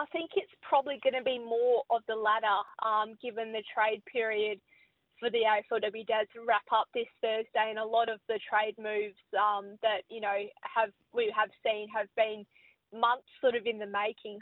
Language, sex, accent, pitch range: English, female, Australian, 210-235 Hz